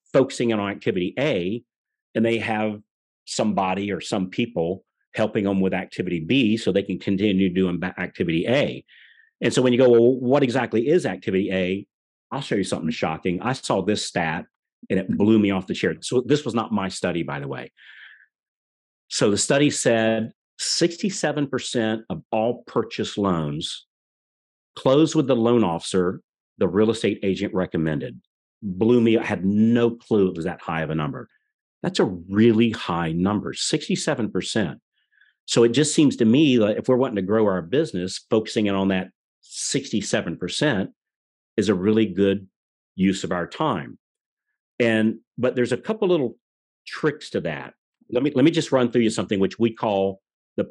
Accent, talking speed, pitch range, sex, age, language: American, 175 wpm, 95-120 Hz, male, 40-59, English